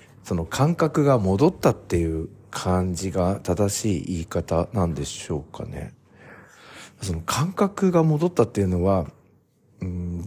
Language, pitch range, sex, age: Japanese, 90-135 Hz, male, 50-69